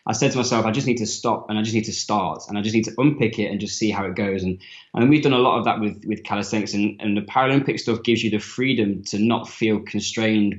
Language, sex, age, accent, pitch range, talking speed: English, male, 10-29, British, 105-115 Hz, 295 wpm